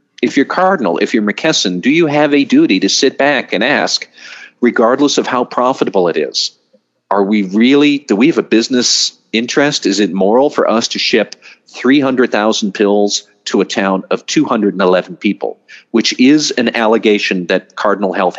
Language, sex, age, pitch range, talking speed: English, male, 50-69, 100-140 Hz, 175 wpm